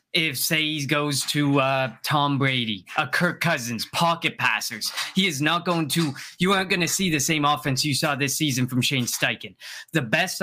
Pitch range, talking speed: 140-170 Hz, 205 wpm